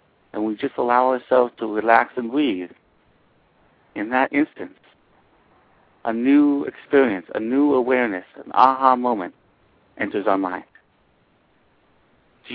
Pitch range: 110-135 Hz